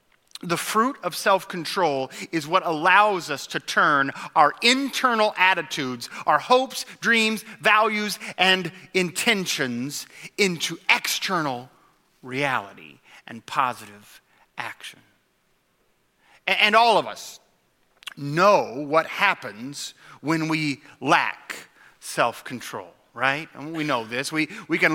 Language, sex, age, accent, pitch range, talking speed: English, male, 30-49, American, 160-215 Hz, 105 wpm